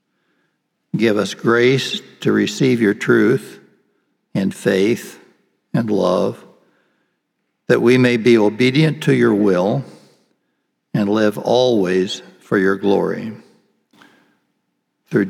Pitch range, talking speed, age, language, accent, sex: 105-125 Hz, 100 wpm, 60-79, English, American, male